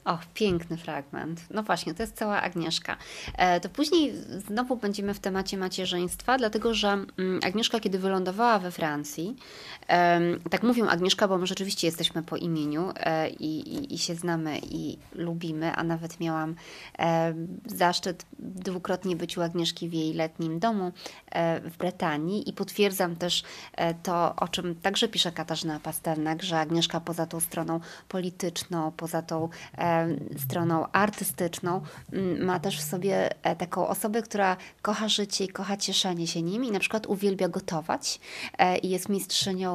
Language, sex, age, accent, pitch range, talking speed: Polish, female, 20-39, native, 165-200 Hz, 145 wpm